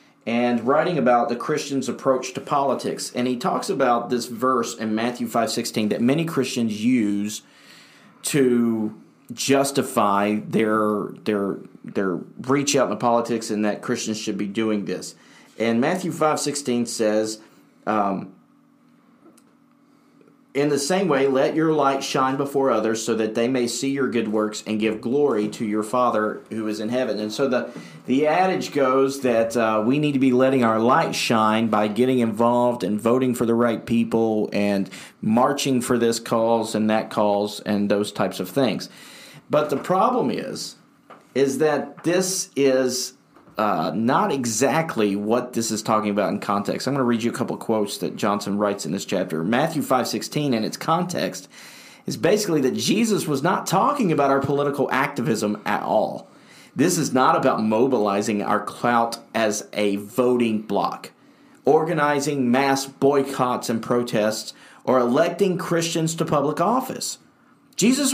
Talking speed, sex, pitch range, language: 160 wpm, male, 110-140 Hz, English